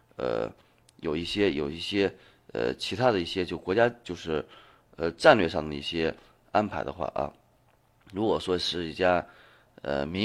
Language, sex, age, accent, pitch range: Chinese, male, 30-49, native, 80-110 Hz